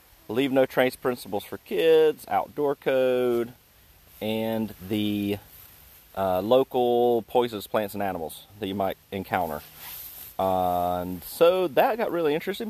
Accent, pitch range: American, 100-130 Hz